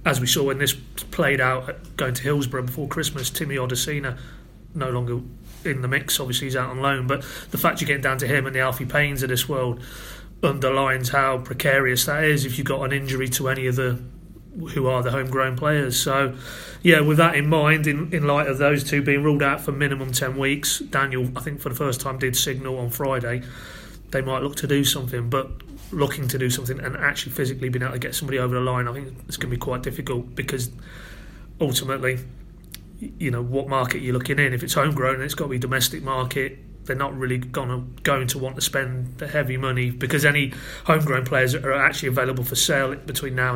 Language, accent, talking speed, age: English, British, 220 wpm, 30-49